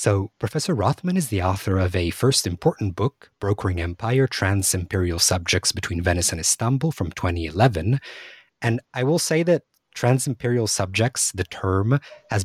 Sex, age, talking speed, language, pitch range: male, 30-49, 150 wpm, English, 90-115 Hz